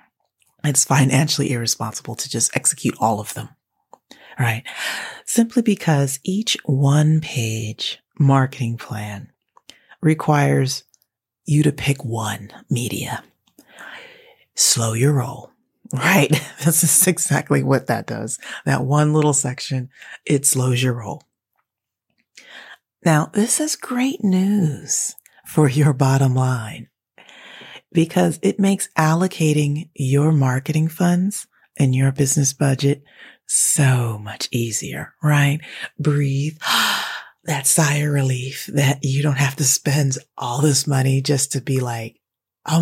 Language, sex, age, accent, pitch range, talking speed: English, female, 30-49, American, 125-155 Hz, 115 wpm